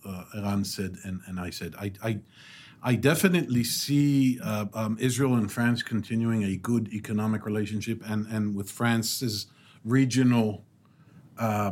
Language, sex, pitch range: English, male, 105-125 Hz